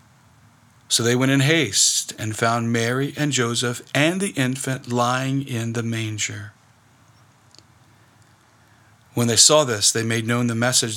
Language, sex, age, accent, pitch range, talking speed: English, male, 40-59, American, 110-130 Hz, 140 wpm